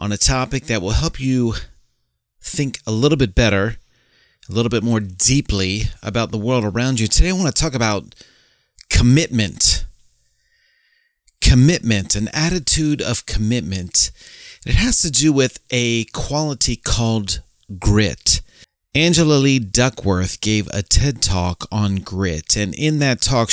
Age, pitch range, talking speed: 30-49, 100-135 Hz, 140 wpm